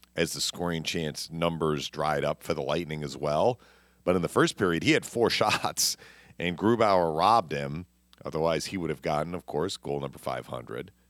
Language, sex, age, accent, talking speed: English, male, 40-59, American, 190 wpm